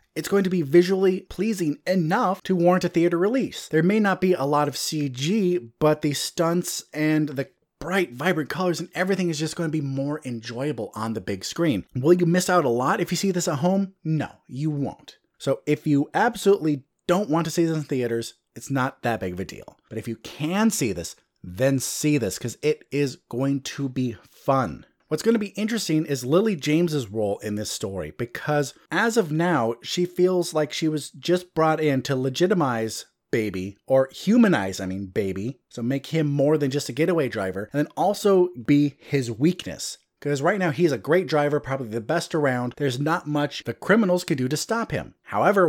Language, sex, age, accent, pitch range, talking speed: English, male, 30-49, American, 130-175 Hz, 210 wpm